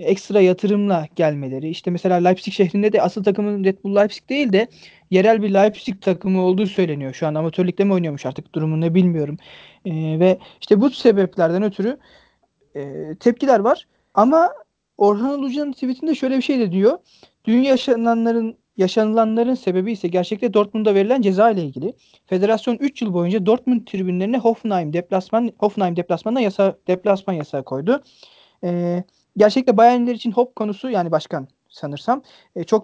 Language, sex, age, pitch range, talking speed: Turkish, male, 40-59, 180-230 Hz, 145 wpm